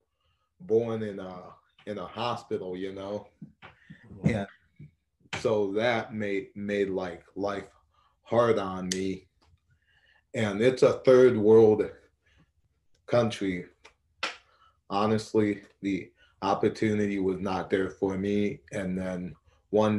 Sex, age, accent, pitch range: male, 20-39, American, 95-105 Hz